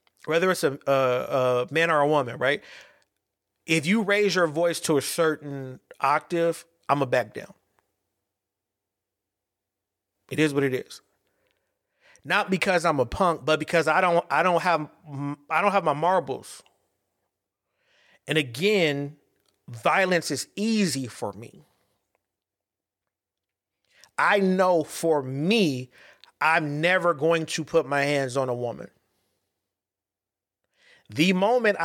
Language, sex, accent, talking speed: English, male, American, 130 wpm